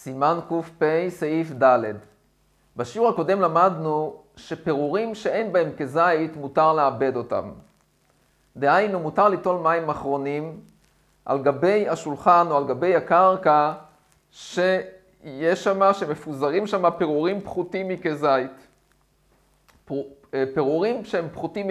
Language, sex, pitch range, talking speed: Hebrew, male, 150-200 Hz, 105 wpm